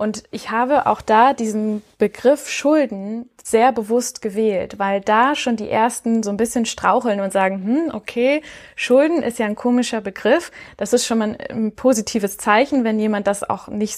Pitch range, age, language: 205-235 Hz, 20-39, German